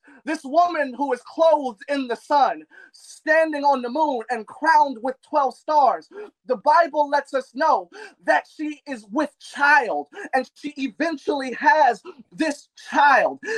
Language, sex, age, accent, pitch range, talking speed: English, male, 30-49, American, 240-305 Hz, 145 wpm